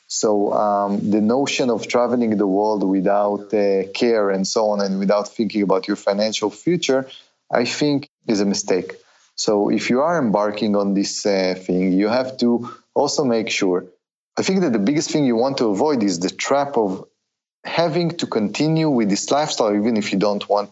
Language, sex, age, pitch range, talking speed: English, male, 30-49, 100-115 Hz, 190 wpm